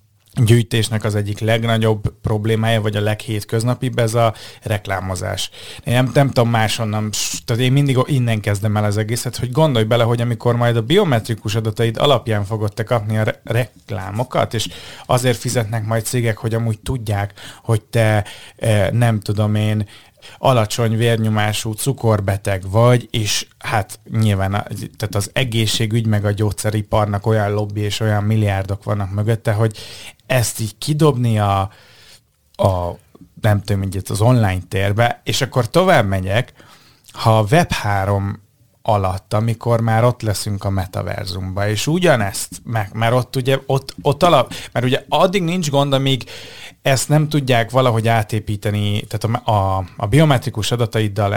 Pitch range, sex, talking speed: 105-120 Hz, male, 145 wpm